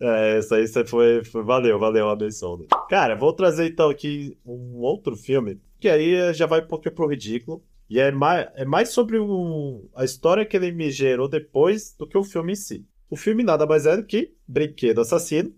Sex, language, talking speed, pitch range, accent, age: male, Portuguese, 215 wpm, 120-160 Hz, Brazilian, 20-39